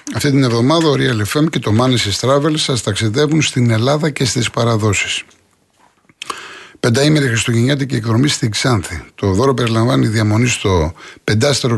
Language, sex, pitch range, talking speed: Greek, male, 105-140 Hz, 145 wpm